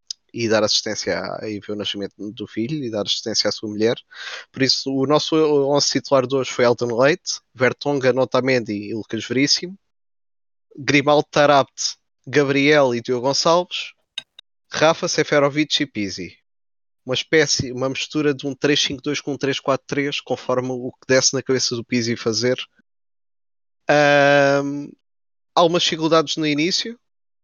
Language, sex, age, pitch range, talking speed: Portuguese, male, 20-39, 125-150 Hz, 145 wpm